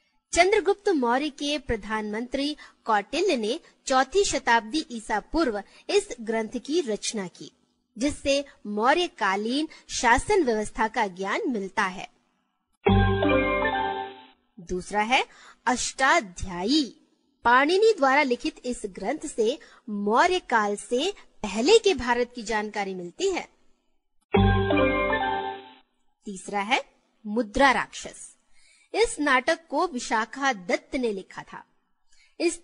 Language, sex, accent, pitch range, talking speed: Hindi, female, native, 205-310 Hz, 100 wpm